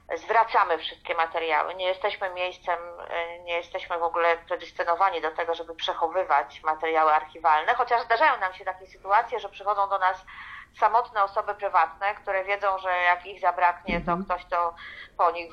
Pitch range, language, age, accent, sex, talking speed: 170-200 Hz, Polish, 40-59, native, female, 160 wpm